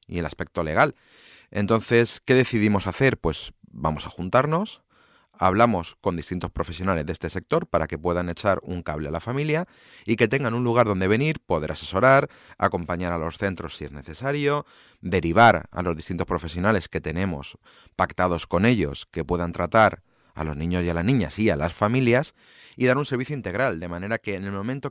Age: 30-49